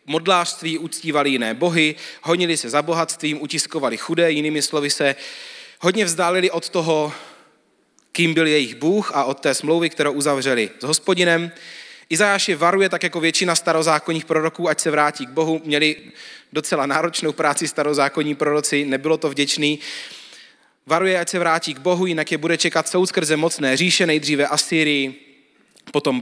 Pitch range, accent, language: 150-180 Hz, native, Czech